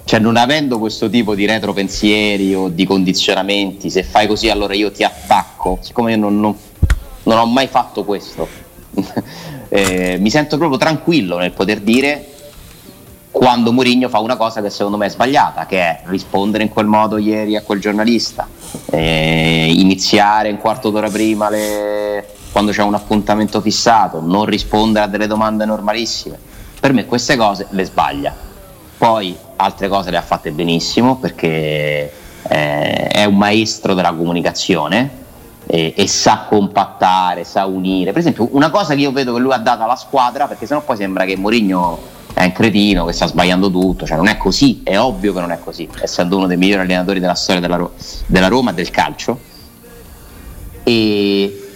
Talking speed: 175 wpm